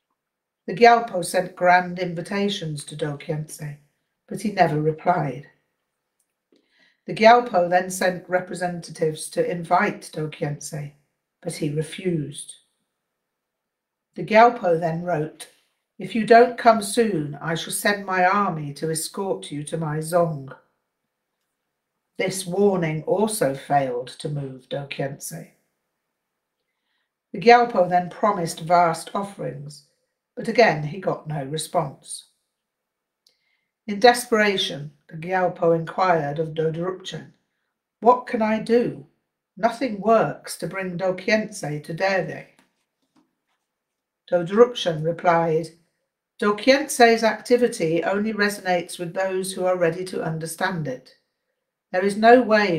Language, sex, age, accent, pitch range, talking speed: English, female, 60-79, British, 155-200 Hz, 110 wpm